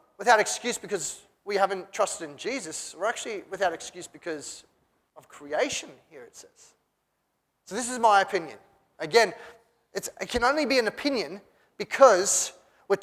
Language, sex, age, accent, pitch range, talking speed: English, male, 30-49, Australian, 180-245 Hz, 145 wpm